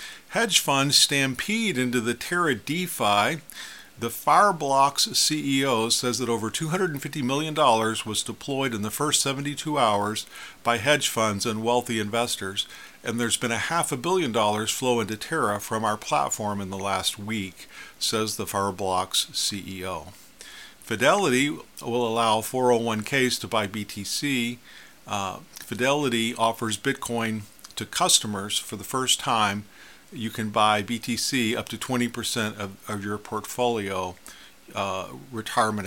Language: English